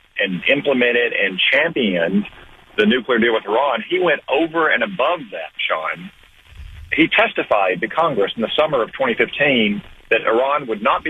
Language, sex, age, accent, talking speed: English, male, 40-59, American, 160 wpm